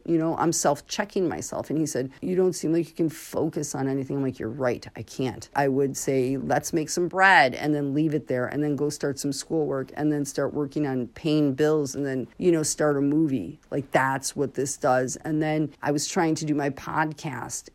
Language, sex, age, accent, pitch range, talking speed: English, female, 40-59, American, 140-160 Hz, 235 wpm